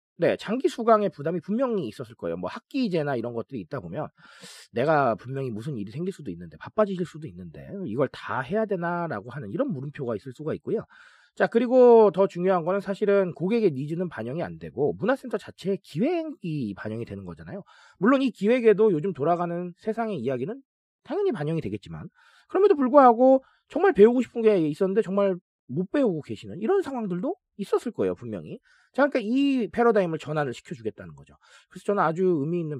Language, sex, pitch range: Korean, male, 150-245 Hz